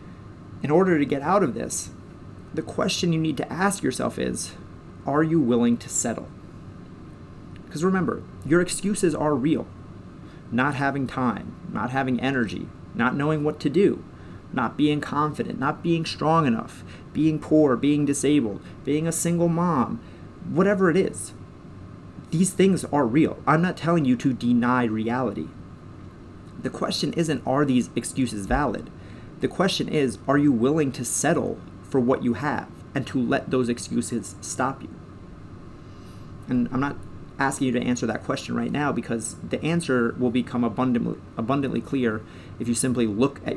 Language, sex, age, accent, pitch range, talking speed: English, male, 30-49, American, 115-150 Hz, 160 wpm